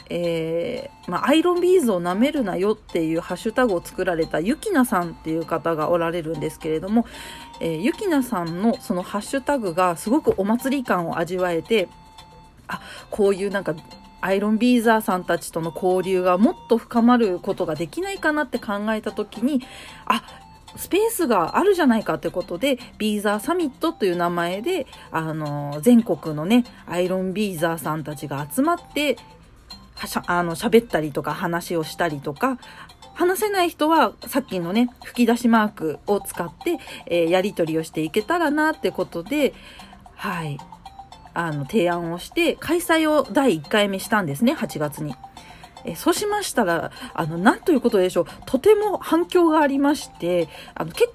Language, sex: Japanese, female